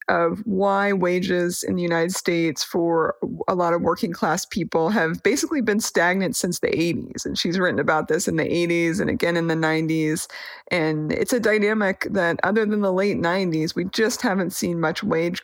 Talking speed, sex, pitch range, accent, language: 195 wpm, female, 170-220 Hz, American, English